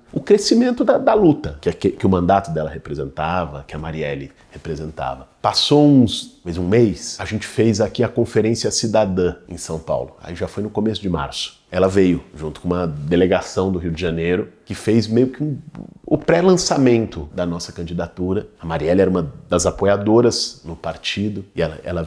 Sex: male